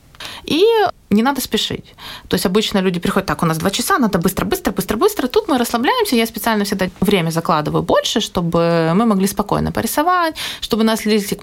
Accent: native